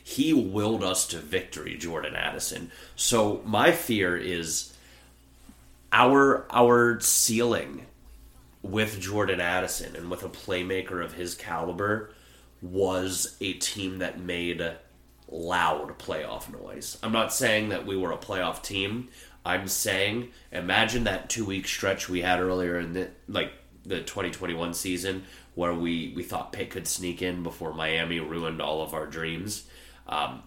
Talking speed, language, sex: 145 wpm, English, male